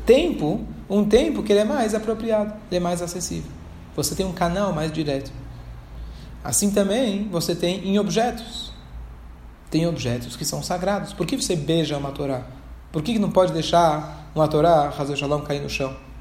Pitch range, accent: 150-220 Hz, Brazilian